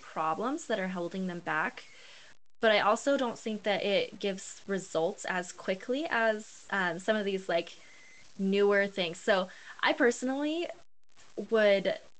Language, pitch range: English, 190-240 Hz